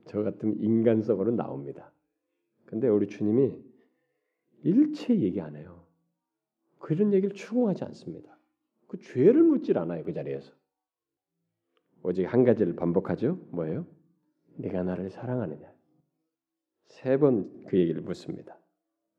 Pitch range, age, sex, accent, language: 110-165 Hz, 40-59, male, native, Korean